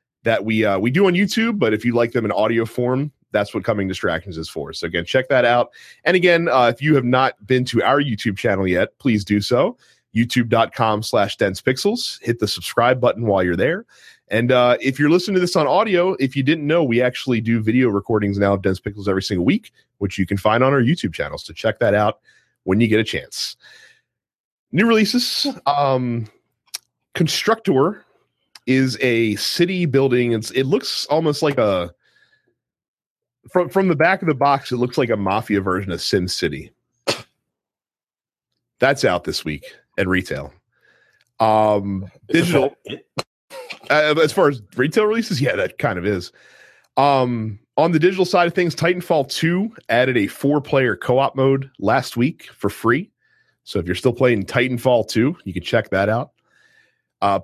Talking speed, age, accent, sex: 185 wpm, 30-49, American, male